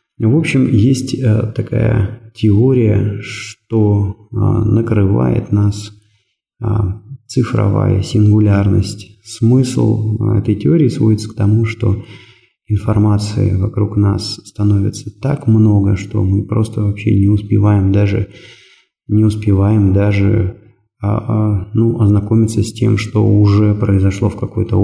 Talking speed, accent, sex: 100 wpm, native, male